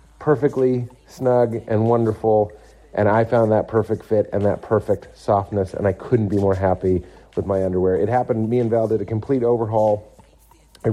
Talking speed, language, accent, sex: 180 wpm, English, American, male